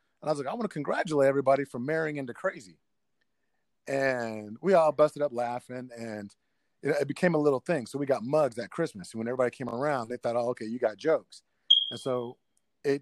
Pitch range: 115-150 Hz